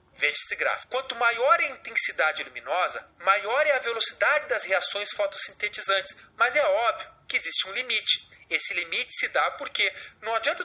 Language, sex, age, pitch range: English, male, 30-49, 205-295 Hz